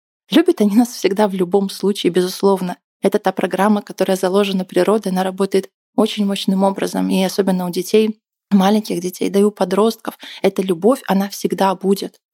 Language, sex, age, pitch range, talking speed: Russian, female, 20-39, 190-225 Hz, 165 wpm